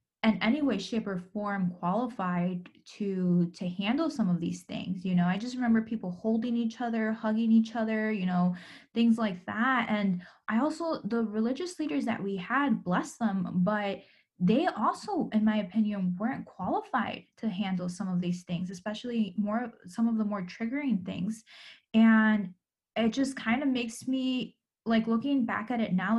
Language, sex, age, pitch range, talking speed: English, female, 10-29, 195-235 Hz, 175 wpm